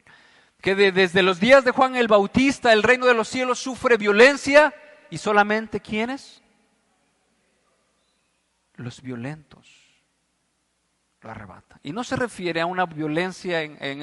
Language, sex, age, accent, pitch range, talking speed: Spanish, male, 50-69, Mexican, 175-295 Hz, 135 wpm